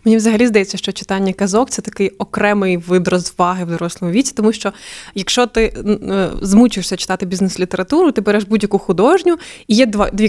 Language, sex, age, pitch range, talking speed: Ukrainian, female, 20-39, 195-235 Hz, 175 wpm